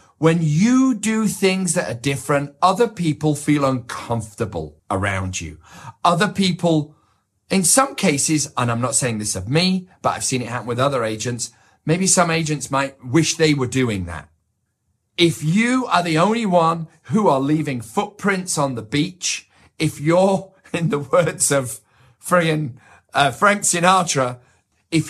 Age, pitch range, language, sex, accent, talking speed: 40-59, 105-170 Hz, English, male, British, 155 wpm